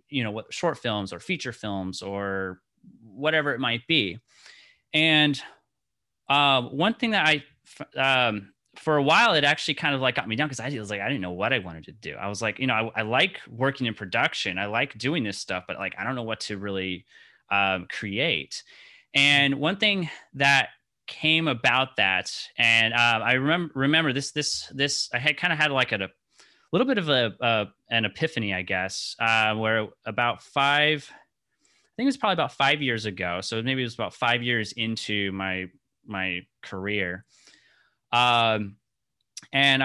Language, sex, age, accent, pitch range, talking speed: English, male, 30-49, American, 110-145 Hz, 195 wpm